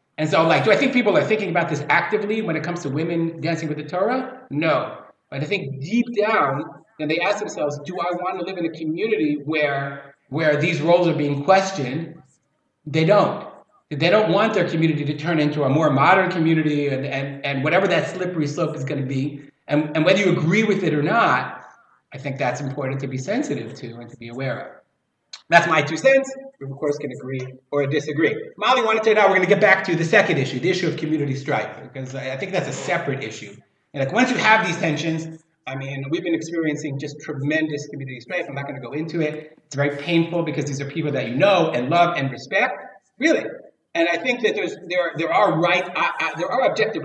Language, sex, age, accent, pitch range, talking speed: English, male, 30-49, American, 140-175 Hz, 230 wpm